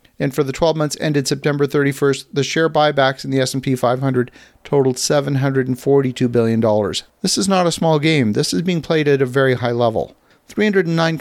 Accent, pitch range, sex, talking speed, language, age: American, 125-155 Hz, male, 180 wpm, English, 50-69